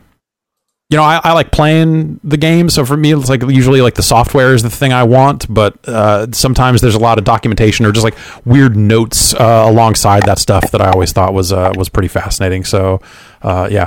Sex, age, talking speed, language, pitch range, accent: male, 30-49, 220 wpm, English, 95-115 Hz, American